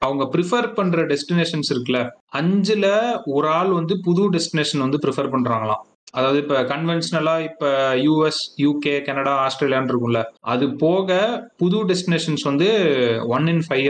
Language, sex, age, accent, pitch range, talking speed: Tamil, male, 30-49, native, 130-170 Hz, 135 wpm